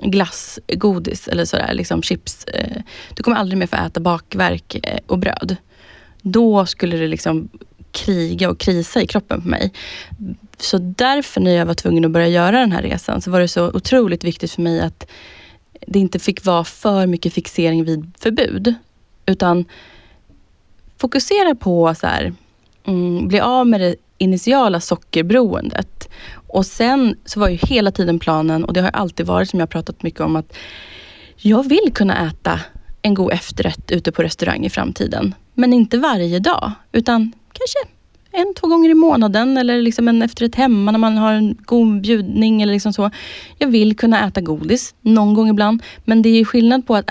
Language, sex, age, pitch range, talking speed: Swedish, female, 20-39, 170-230 Hz, 175 wpm